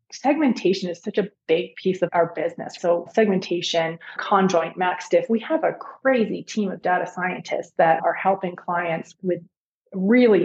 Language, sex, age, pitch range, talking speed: English, female, 30-49, 170-200 Hz, 160 wpm